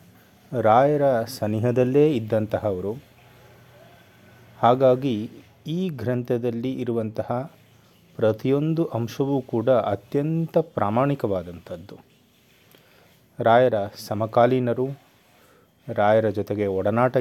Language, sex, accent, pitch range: Kannada, male, native, 105-130 Hz